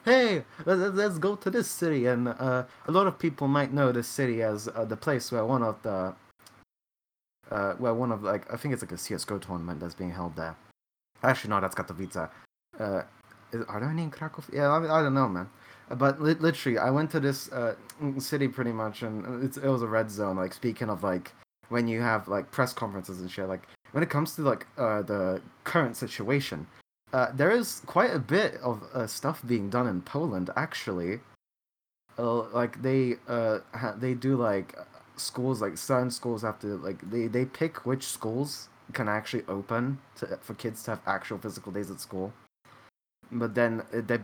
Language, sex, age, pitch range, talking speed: English, male, 20-39, 105-135 Hz, 200 wpm